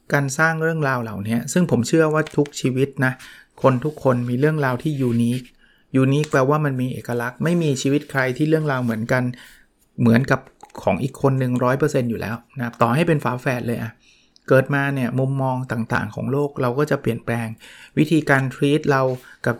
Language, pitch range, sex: Thai, 120-150 Hz, male